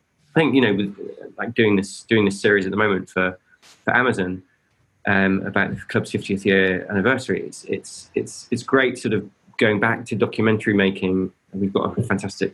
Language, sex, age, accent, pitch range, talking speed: English, male, 20-39, British, 95-110 Hz, 190 wpm